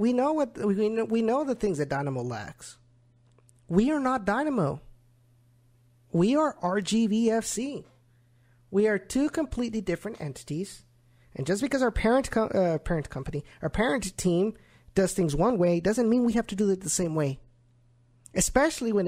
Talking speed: 165 wpm